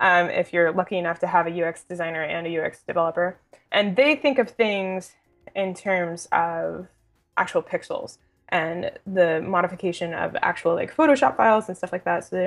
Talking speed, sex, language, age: 185 wpm, female, English, 20-39